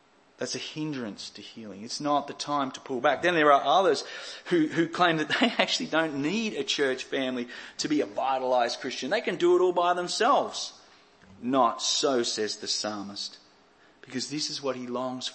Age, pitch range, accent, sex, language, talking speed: 30-49, 140-180 Hz, Australian, male, English, 195 wpm